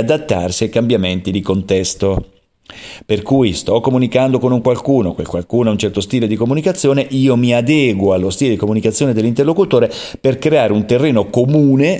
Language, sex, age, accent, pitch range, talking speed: Italian, male, 40-59, native, 100-135 Hz, 165 wpm